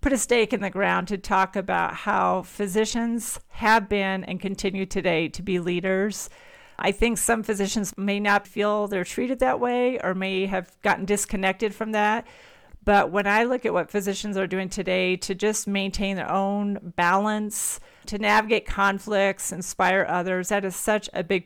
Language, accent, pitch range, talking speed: English, American, 185-215 Hz, 175 wpm